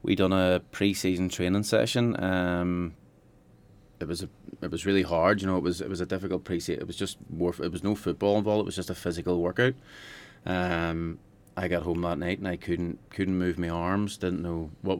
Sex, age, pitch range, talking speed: male, 30-49, 85-100 Hz, 215 wpm